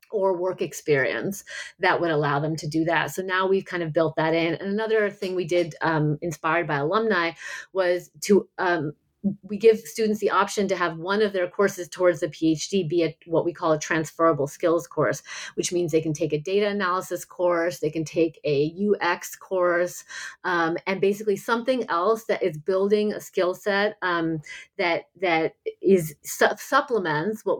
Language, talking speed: English, 185 wpm